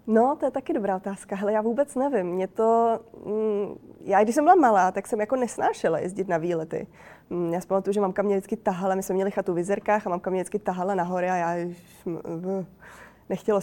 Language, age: Czech, 20-39